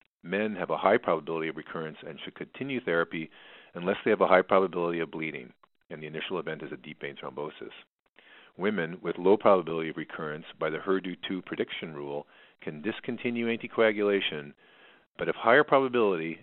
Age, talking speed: 40-59, 170 wpm